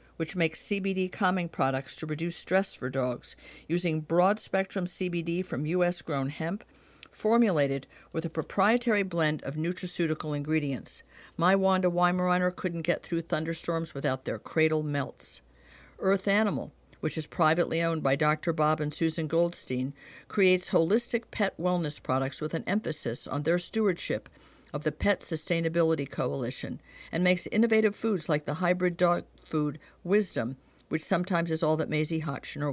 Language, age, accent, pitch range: English, 50-69, American, 150-185 Hz